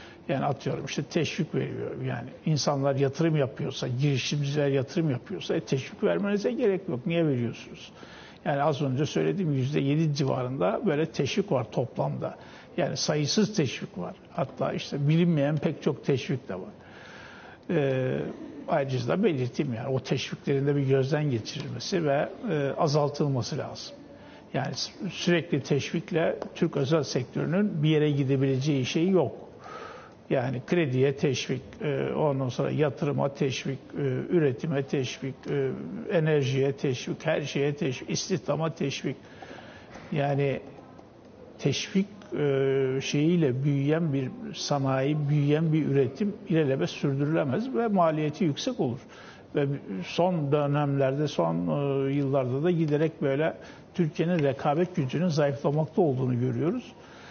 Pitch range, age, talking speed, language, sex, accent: 135-165 Hz, 60-79, 115 wpm, Turkish, male, native